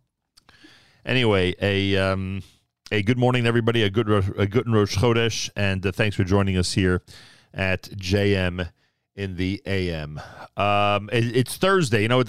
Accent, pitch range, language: American, 90-115 Hz, English